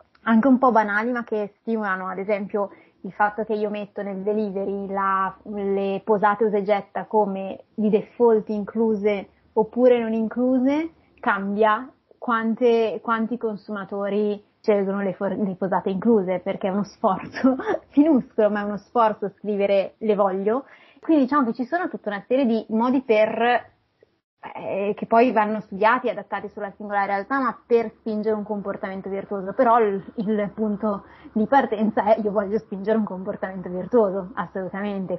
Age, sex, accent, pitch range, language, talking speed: 20-39, female, native, 195-220 Hz, Italian, 150 wpm